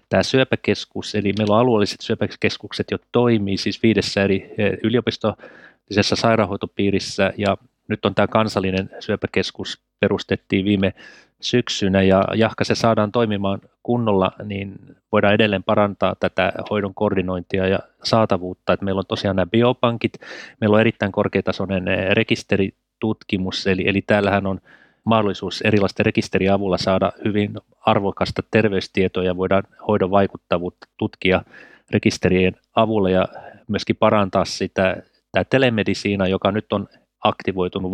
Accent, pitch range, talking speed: native, 95-110 Hz, 125 wpm